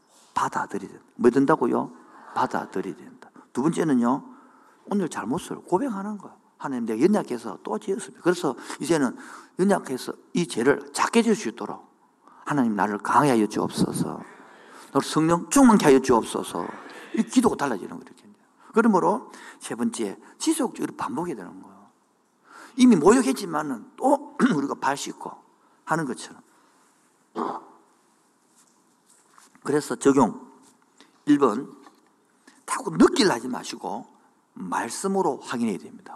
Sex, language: male, Korean